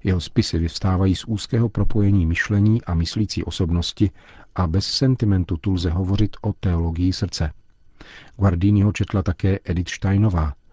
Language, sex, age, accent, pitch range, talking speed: Czech, male, 50-69, native, 85-100 Hz, 135 wpm